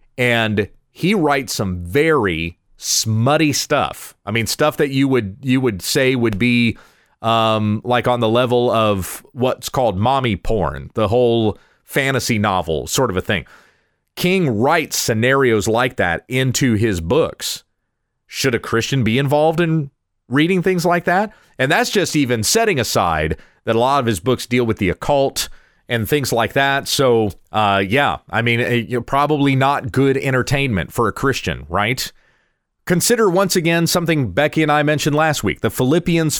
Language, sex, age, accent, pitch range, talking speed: English, male, 40-59, American, 110-155 Hz, 165 wpm